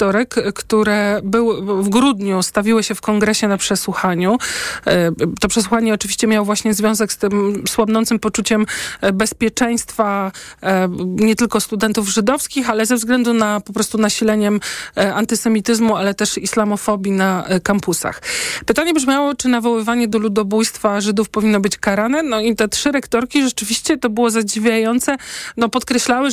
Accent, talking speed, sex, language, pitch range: native, 130 wpm, male, Polish, 200-230 Hz